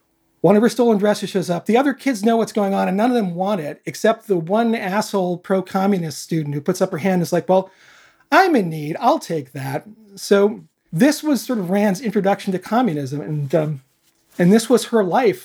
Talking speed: 220 wpm